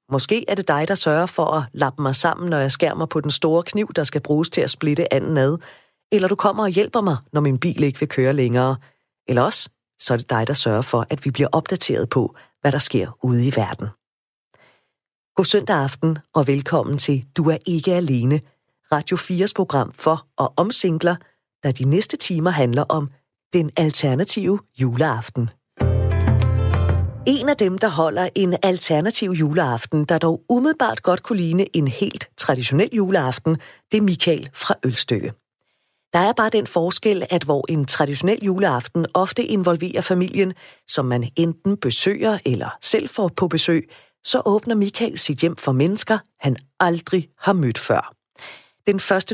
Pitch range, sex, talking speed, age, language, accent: 140-190 Hz, female, 175 wpm, 40-59, Danish, native